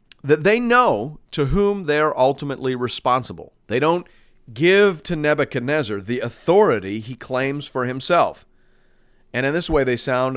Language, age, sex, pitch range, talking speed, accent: English, 40-59, male, 125-190 Hz, 145 wpm, American